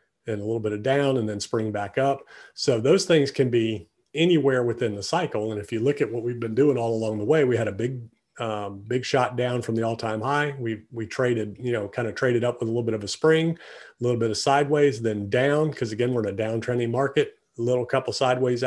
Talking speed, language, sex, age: 250 wpm, English, male, 40-59